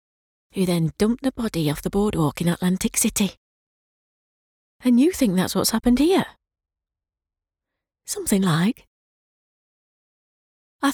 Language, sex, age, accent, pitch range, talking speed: English, female, 30-49, British, 160-235 Hz, 115 wpm